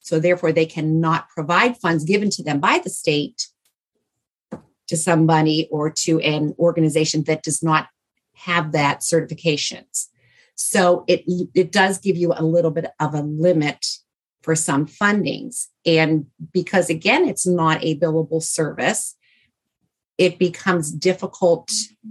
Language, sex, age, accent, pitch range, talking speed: English, female, 40-59, American, 155-185 Hz, 135 wpm